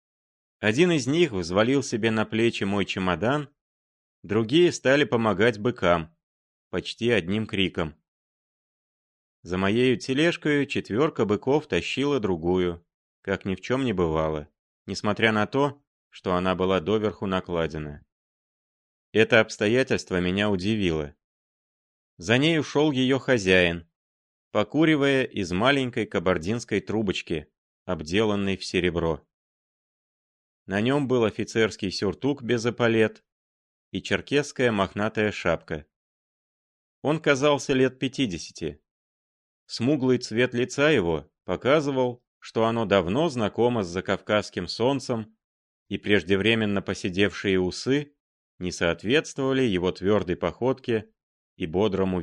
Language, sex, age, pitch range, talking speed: Russian, male, 30-49, 90-130 Hz, 105 wpm